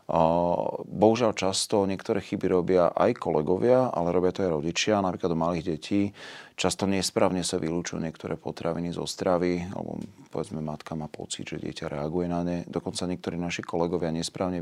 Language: Slovak